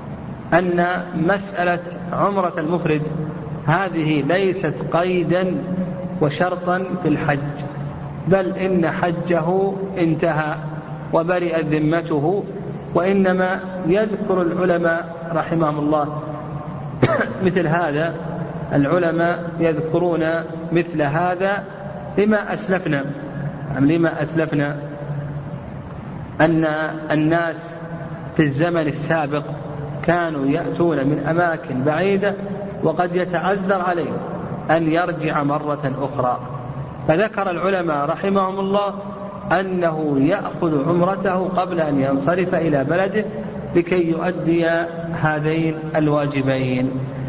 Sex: male